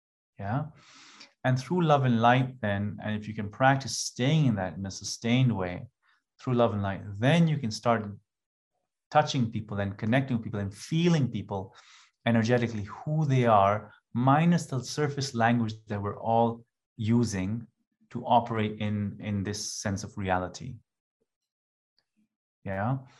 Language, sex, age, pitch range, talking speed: English, male, 30-49, 105-125 Hz, 145 wpm